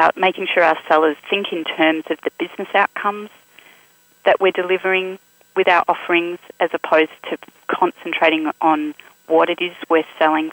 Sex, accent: female, Australian